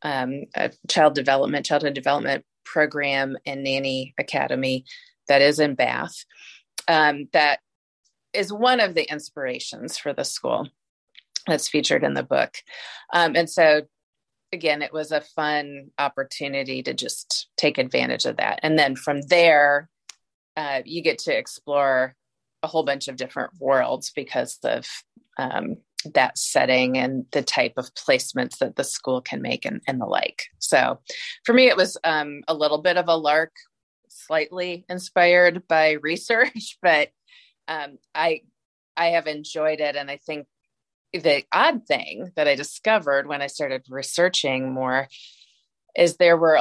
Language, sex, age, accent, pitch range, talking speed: English, female, 30-49, American, 140-180 Hz, 150 wpm